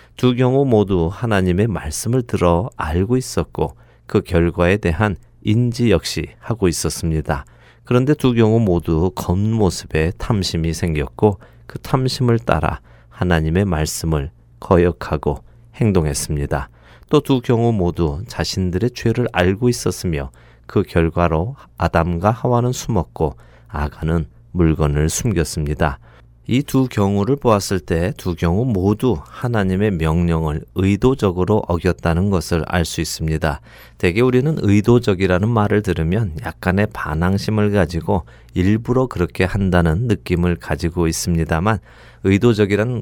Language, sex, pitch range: Korean, male, 80-110 Hz